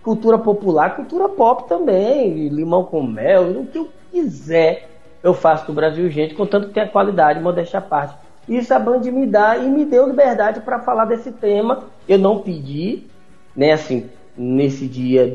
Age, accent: 20-39, Brazilian